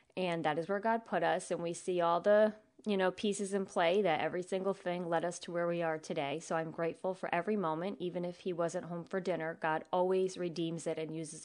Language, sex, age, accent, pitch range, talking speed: English, female, 30-49, American, 170-210 Hz, 245 wpm